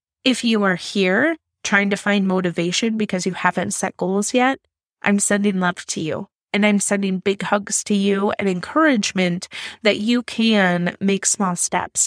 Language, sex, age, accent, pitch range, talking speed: English, female, 20-39, American, 180-225 Hz, 170 wpm